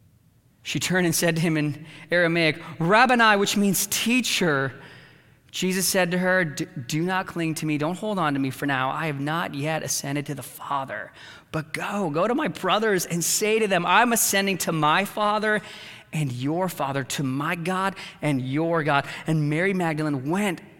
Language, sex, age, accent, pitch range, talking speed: English, male, 30-49, American, 155-205 Hz, 185 wpm